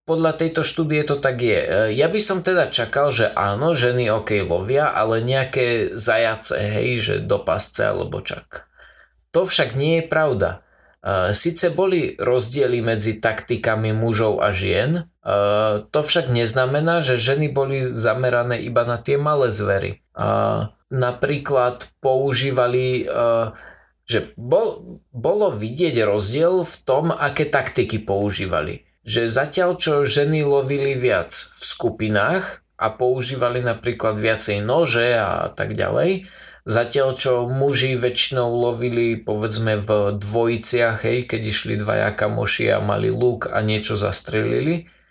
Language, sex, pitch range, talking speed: Slovak, male, 110-135 Hz, 130 wpm